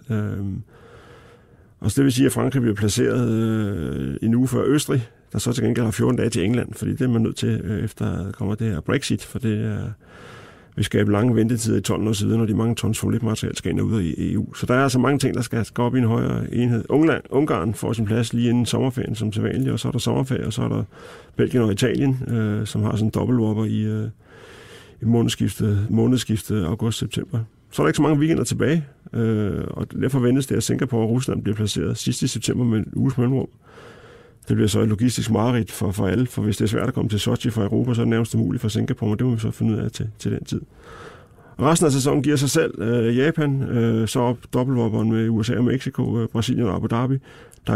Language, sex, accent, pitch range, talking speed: Danish, male, native, 110-125 Hz, 250 wpm